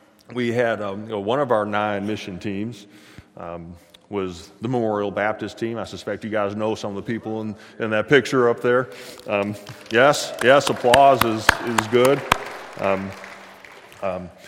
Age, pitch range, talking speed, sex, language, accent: 30-49, 85-105 Hz, 170 wpm, male, English, American